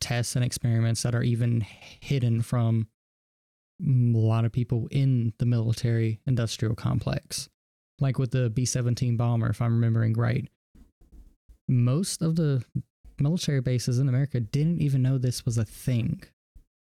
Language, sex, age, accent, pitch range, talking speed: English, male, 20-39, American, 115-130 Hz, 140 wpm